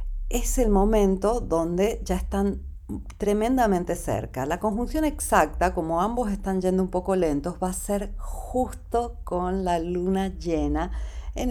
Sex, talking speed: female, 140 wpm